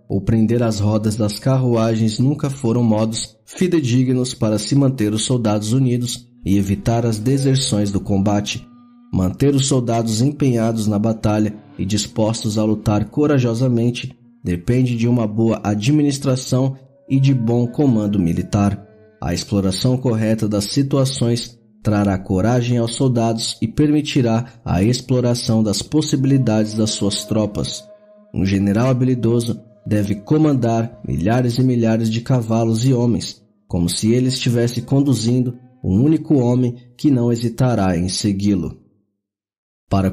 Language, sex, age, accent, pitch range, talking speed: Portuguese, male, 20-39, Brazilian, 105-130 Hz, 130 wpm